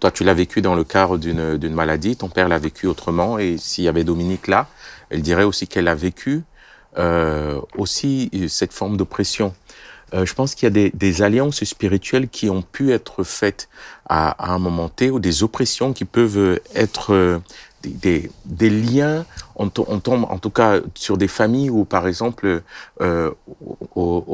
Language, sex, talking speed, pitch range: French, male, 190 wpm, 90-125 Hz